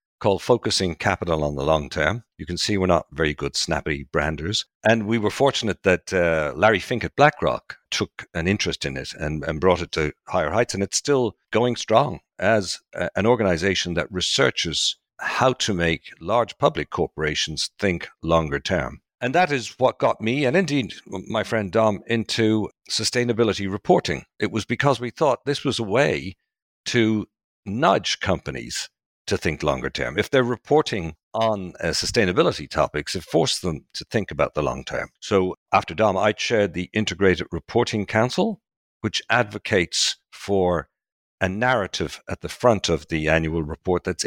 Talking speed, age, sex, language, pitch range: 170 wpm, 50-69, male, English, 80-115 Hz